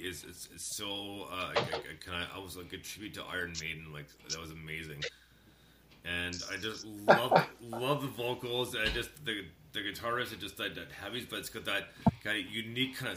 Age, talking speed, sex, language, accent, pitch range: 30-49, 220 wpm, male, English, American, 95-120 Hz